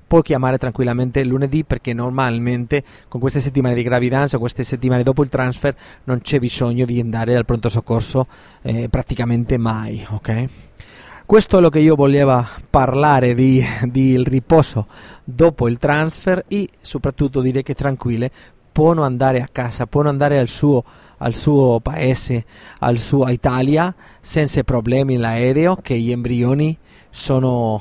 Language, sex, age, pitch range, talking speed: Italian, male, 30-49, 120-145 Hz, 145 wpm